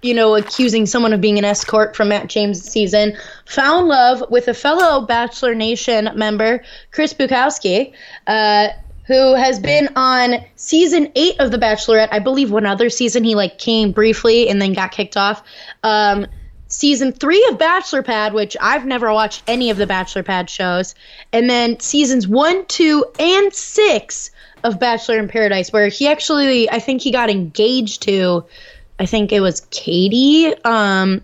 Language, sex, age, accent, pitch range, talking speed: English, female, 20-39, American, 210-260 Hz, 170 wpm